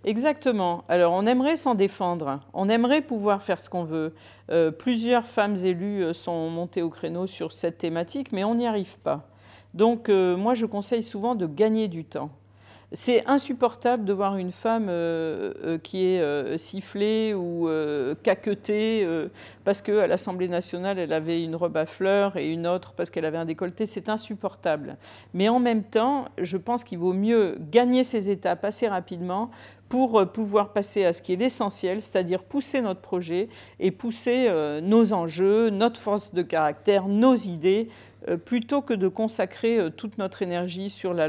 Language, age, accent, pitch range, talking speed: French, 40-59, French, 170-220 Hz, 180 wpm